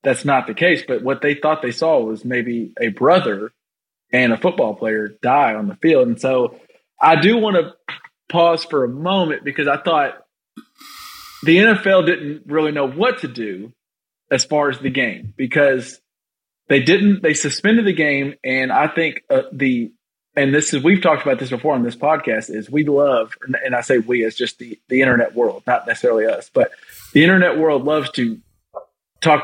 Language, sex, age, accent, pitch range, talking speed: English, male, 30-49, American, 130-170 Hz, 190 wpm